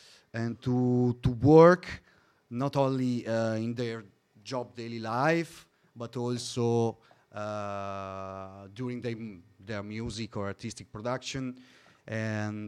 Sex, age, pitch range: male, 30-49, 110-135 Hz